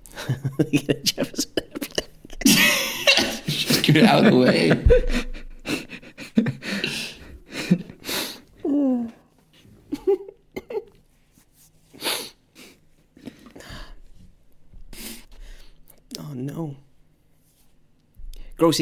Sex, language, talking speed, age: male, English, 45 wpm, 40-59